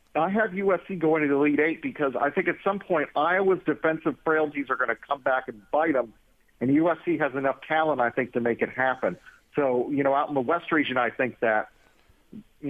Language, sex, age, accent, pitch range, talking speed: English, male, 50-69, American, 135-160 Hz, 225 wpm